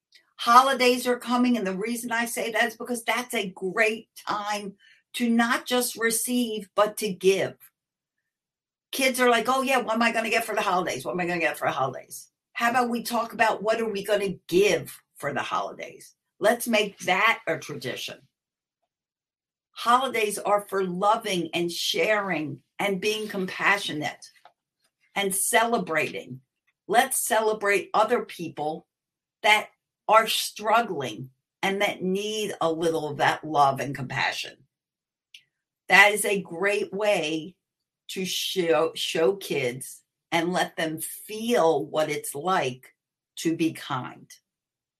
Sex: female